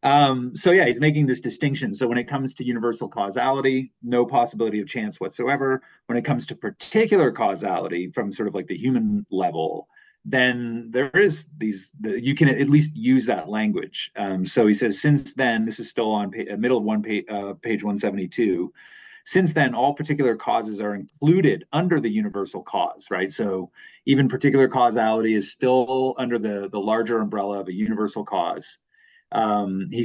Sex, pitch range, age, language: male, 110-150 Hz, 30-49, English